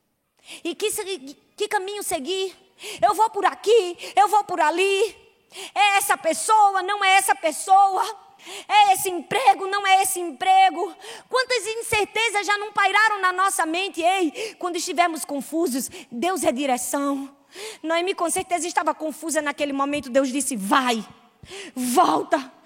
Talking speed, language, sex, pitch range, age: 145 wpm, Portuguese, female, 260-380 Hz, 20-39